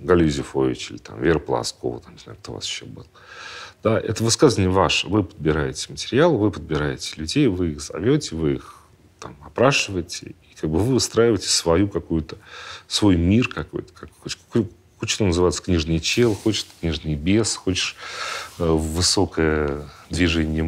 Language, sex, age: Russian, male, 40-59